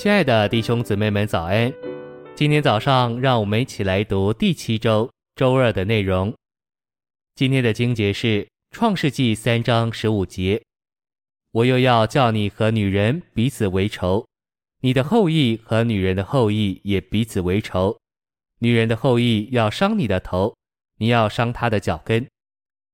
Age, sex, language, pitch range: 20-39, male, Chinese, 105-125 Hz